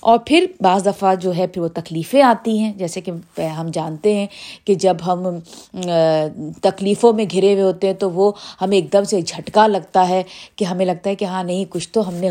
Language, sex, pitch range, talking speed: Urdu, female, 185-245 Hz, 220 wpm